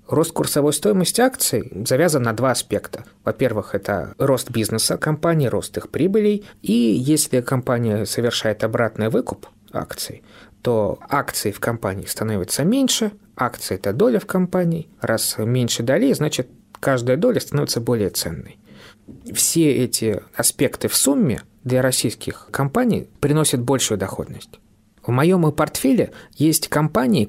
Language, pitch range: Russian, 110-155 Hz